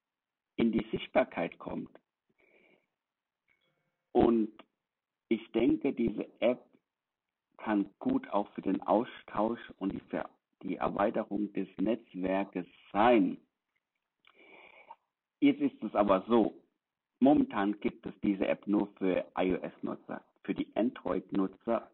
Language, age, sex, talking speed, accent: German, 60-79, male, 105 wpm, German